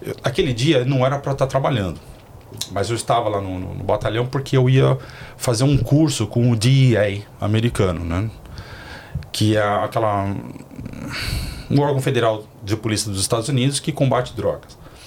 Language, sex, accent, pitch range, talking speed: Portuguese, male, Brazilian, 110-140 Hz, 160 wpm